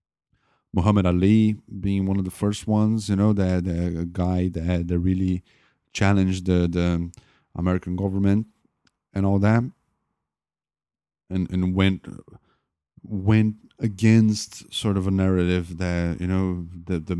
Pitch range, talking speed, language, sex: 85-100 Hz, 130 wpm, English, male